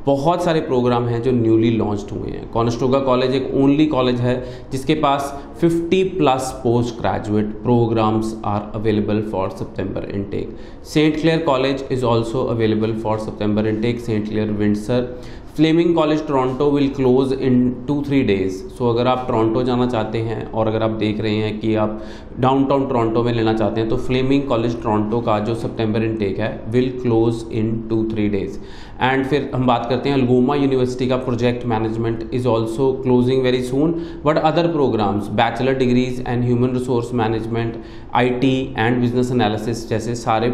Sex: male